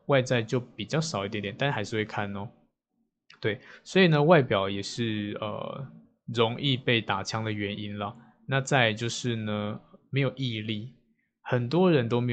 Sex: male